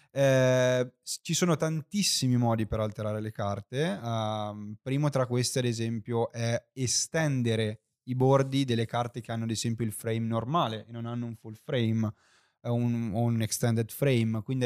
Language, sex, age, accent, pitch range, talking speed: Italian, male, 20-39, native, 110-135 Hz, 170 wpm